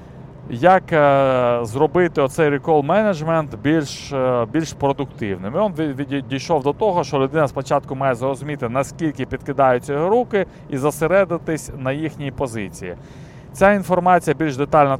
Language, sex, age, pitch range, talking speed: Ukrainian, male, 30-49, 120-150 Hz, 120 wpm